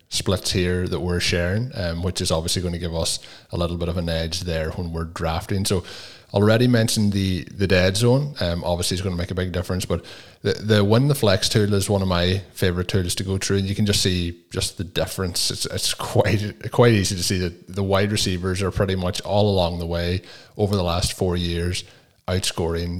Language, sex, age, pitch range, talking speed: English, male, 20-39, 90-105 Hz, 230 wpm